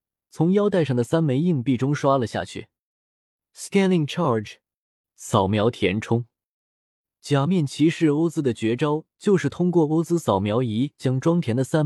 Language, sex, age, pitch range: Chinese, male, 20-39, 115-160 Hz